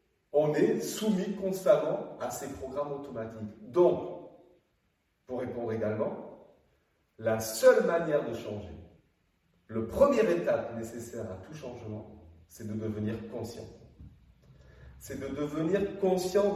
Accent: French